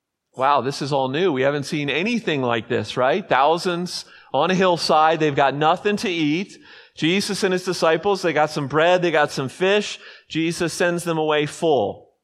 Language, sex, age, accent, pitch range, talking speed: English, male, 30-49, American, 150-195 Hz, 185 wpm